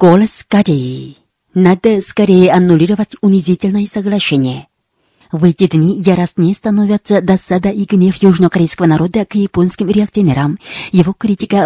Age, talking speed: 30-49, 110 wpm